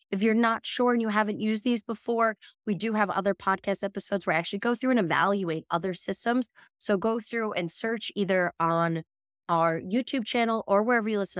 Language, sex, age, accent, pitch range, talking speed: English, female, 20-39, American, 175-225 Hz, 205 wpm